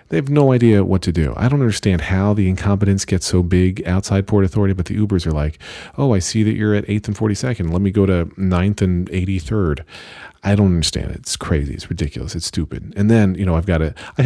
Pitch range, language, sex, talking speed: 80-105 Hz, English, male, 240 wpm